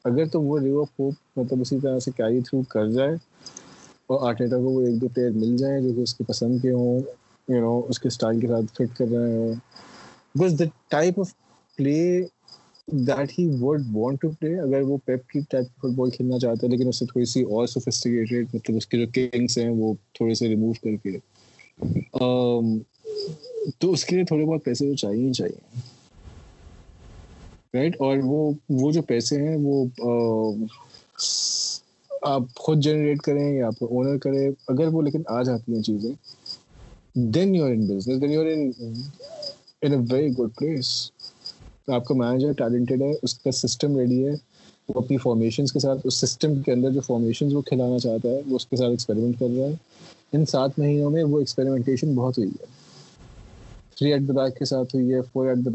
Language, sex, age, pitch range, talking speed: Urdu, male, 20-39, 120-145 Hz, 170 wpm